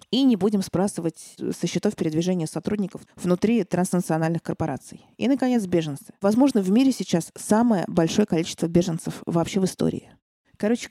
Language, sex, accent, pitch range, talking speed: Russian, female, native, 175-225 Hz, 145 wpm